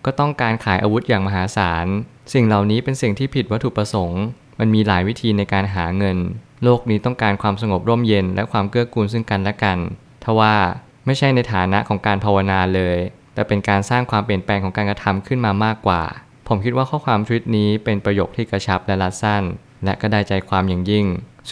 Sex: male